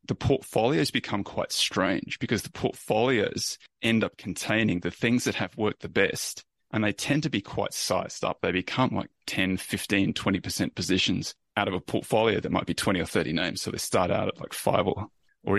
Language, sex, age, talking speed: English, male, 20-39, 205 wpm